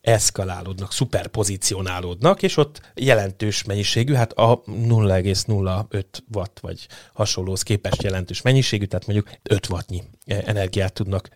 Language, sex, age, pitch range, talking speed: Hungarian, male, 30-49, 100-125 Hz, 110 wpm